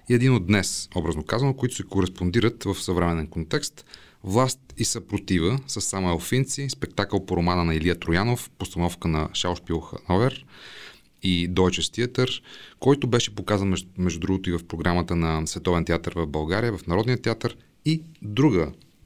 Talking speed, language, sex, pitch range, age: 155 wpm, Bulgarian, male, 85-115 Hz, 30-49